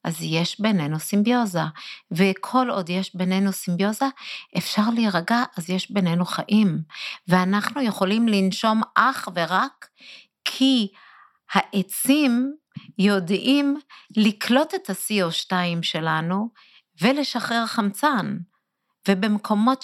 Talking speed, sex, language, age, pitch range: 95 wpm, female, Hebrew, 50-69, 165-230 Hz